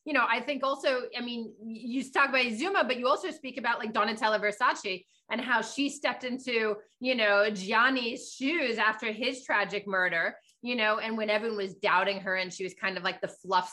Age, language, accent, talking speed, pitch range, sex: 30-49, English, American, 210 wpm, 185-235 Hz, female